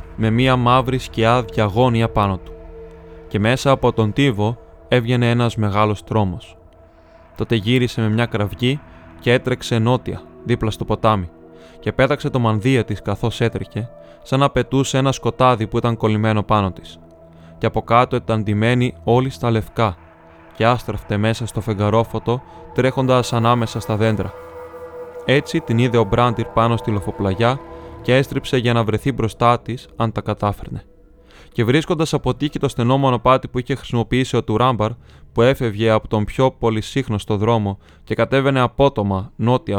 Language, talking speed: Greek, 155 wpm